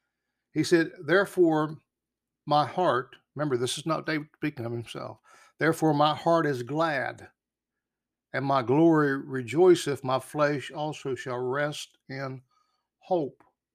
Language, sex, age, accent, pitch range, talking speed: English, male, 60-79, American, 120-155 Hz, 125 wpm